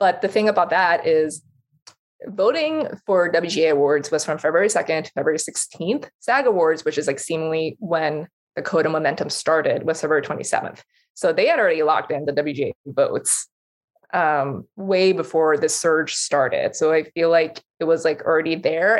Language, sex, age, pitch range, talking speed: English, female, 20-39, 160-220 Hz, 175 wpm